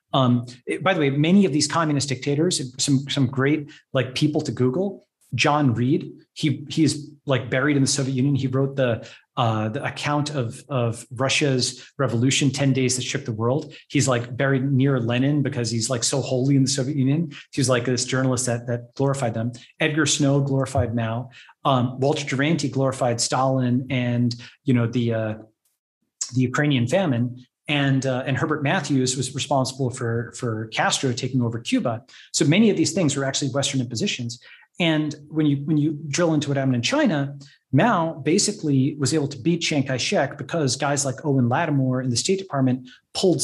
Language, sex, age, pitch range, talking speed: English, male, 30-49, 125-150 Hz, 180 wpm